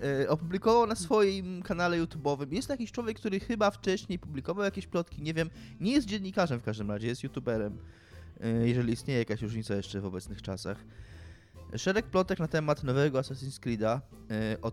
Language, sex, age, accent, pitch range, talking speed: Polish, male, 20-39, native, 105-130 Hz, 165 wpm